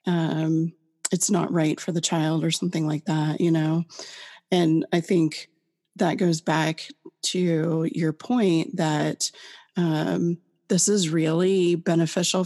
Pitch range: 165-190 Hz